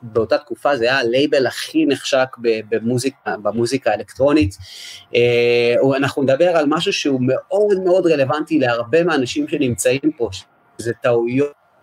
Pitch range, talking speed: 120-160 Hz, 120 wpm